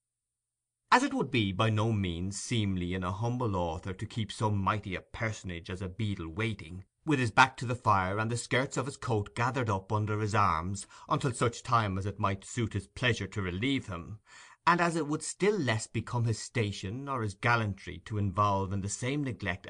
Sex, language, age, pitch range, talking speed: male, English, 30-49, 100-125 Hz, 210 wpm